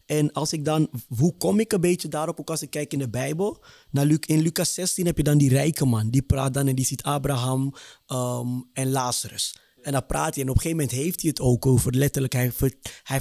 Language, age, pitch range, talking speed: Dutch, 20-39, 130-160 Hz, 255 wpm